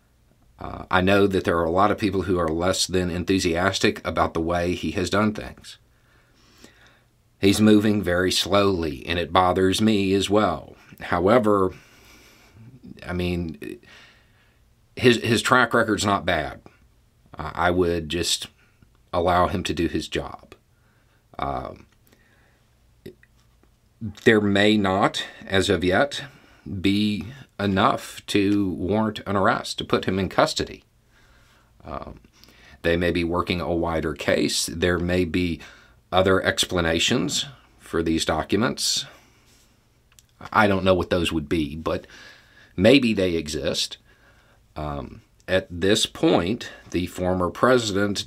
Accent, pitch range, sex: American, 85-110 Hz, male